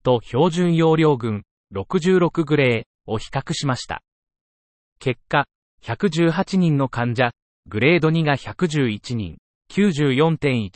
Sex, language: male, Japanese